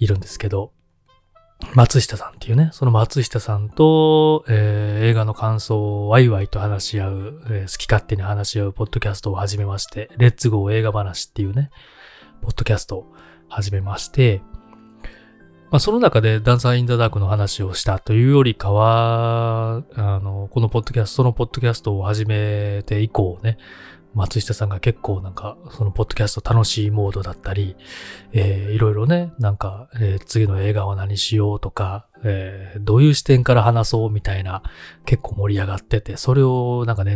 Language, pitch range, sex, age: Japanese, 100-120 Hz, male, 20-39